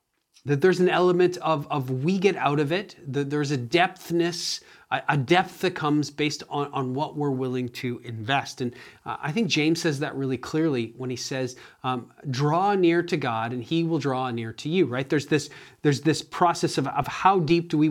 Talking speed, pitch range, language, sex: 210 wpm, 135-175 Hz, English, male